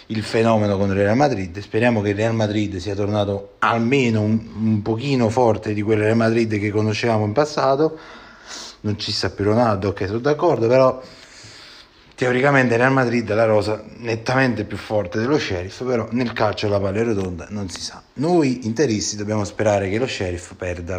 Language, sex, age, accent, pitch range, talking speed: Italian, male, 30-49, native, 105-130 Hz, 180 wpm